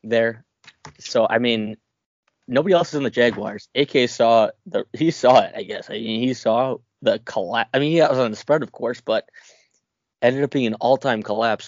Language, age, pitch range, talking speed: English, 20-39, 110-120 Hz, 215 wpm